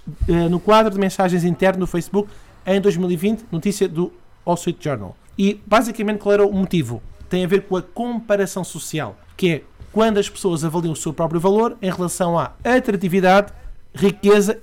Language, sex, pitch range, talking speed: Portuguese, male, 170-200 Hz, 170 wpm